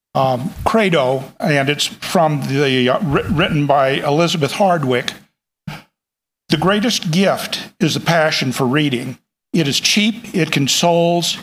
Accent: American